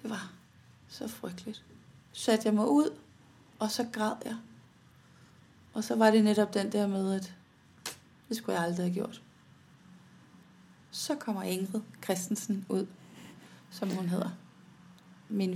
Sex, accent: female, native